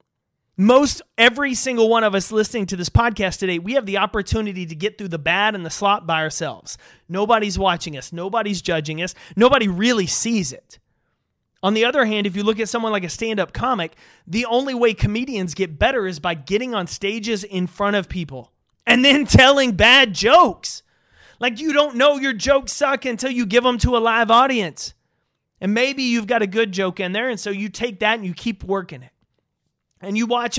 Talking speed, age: 205 wpm, 30-49